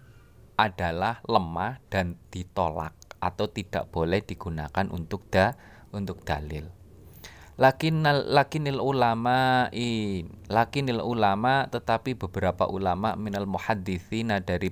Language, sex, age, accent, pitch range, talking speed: Indonesian, male, 20-39, native, 90-110 Hz, 100 wpm